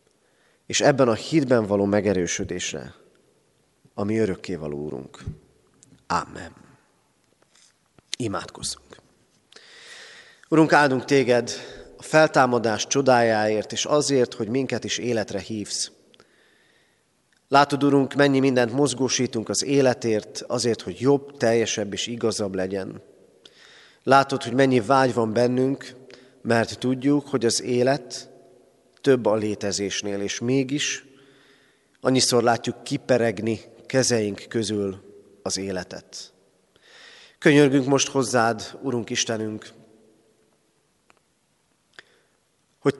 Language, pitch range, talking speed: Hungarian, 110-135 Hz, 95 wpm